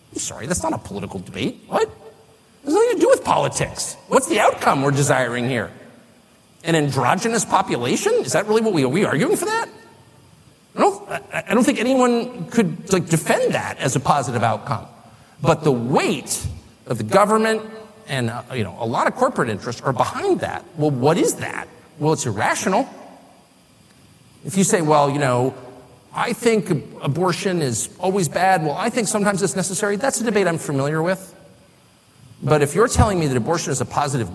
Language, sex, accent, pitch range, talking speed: Dutch, male, American, 140-225 Hz, 190 wpm